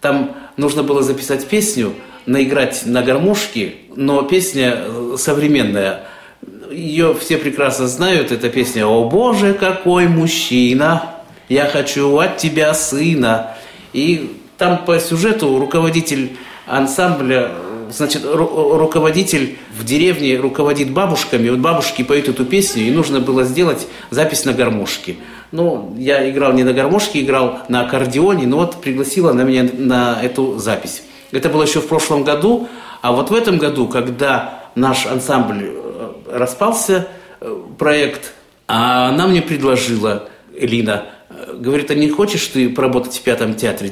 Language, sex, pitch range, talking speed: Russian, male, 125-165 Hz, 135 wpm